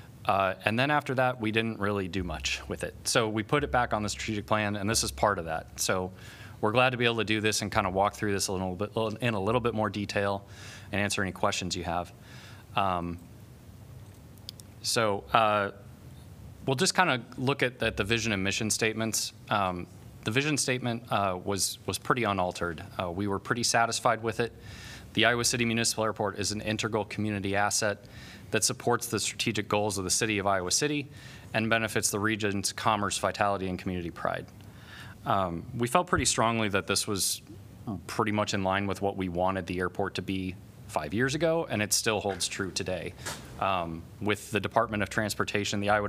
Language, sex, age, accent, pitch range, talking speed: English, male, 20-39, American, 100-115 Hz, 200 wpm